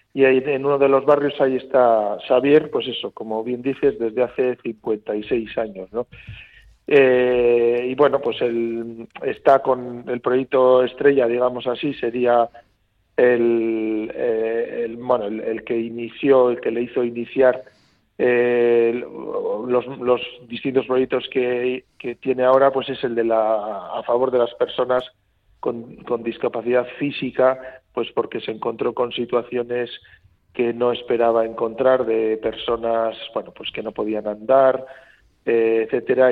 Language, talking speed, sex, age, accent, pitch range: Spanish, 145 wpm, male, 40-59, Spanish, 115-130 Hz